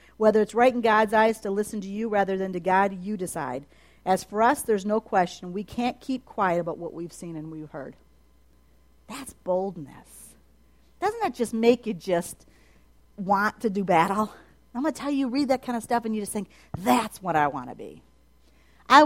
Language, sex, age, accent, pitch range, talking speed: English, female, 50-69, American, 145-240 Hz, 210 wpm